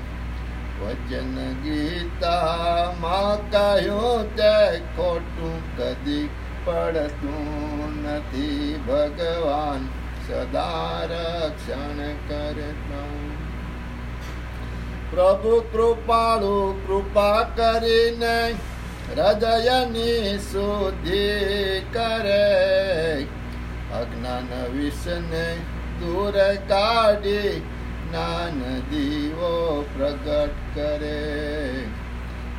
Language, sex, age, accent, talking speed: Gujarati, male, 60-79, native, 40 wpm